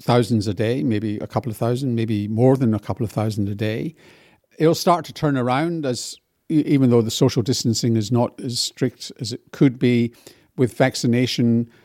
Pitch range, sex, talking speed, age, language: 115-145 Hz, male, 190 wpm, 50-69, English